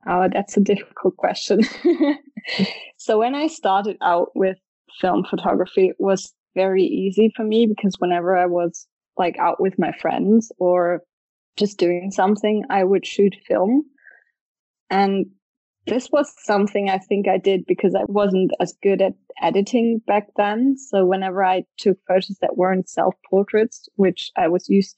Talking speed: 155 wpm